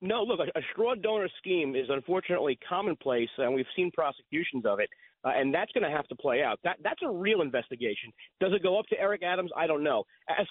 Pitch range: 165-235 Hz